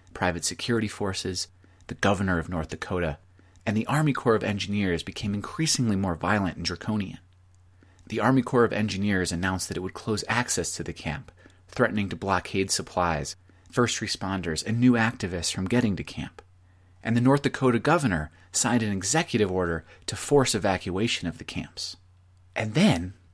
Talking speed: 165 wpm